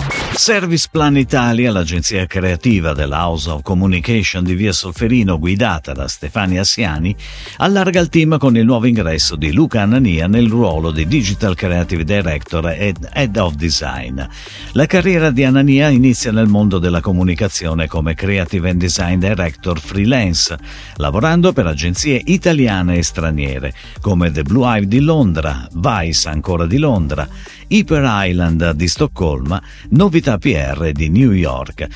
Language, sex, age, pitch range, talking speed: Italian, male, 50-69, 85-135 Hz, 145 wpm